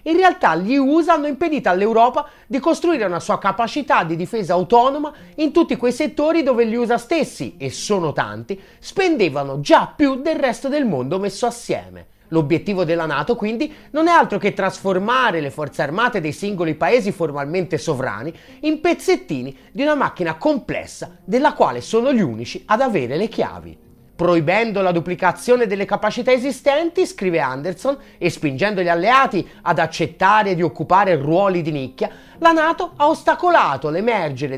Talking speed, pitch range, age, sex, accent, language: 160 wpm, 165-260 Hz, 30-49, male, native, Italian